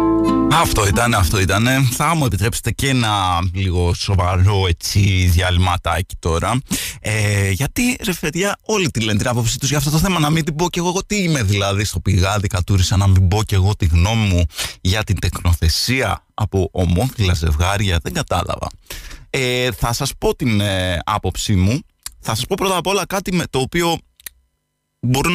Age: 20-39